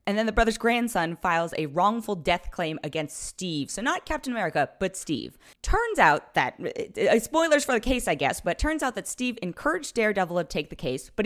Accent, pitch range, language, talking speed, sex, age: American, 155-235 Hz, English, 210 wpm, female, 20-39